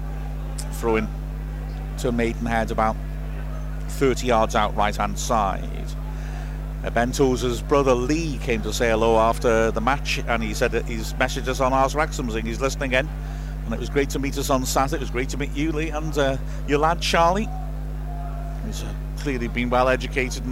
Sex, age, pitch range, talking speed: male, 50-69, 125-150 Hz, 180 wpm